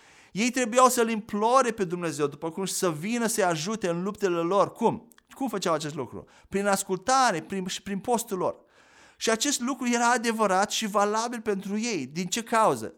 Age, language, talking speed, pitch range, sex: 30-49, Romanian, 180 wpm, 185-235 Hz, male